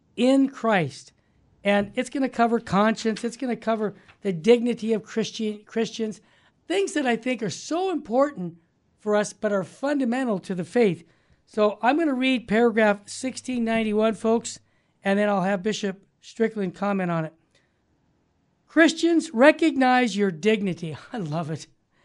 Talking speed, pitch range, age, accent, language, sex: 150 wpm, 195-255 Hz, 60-79, American, English, male